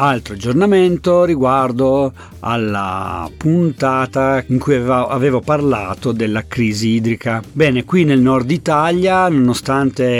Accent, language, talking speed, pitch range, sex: native, Italian, 105 wpm, 115-145 Hz, male